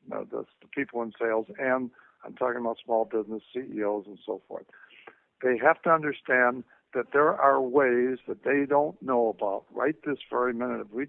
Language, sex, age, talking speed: English, male, 60-79, 185 wpm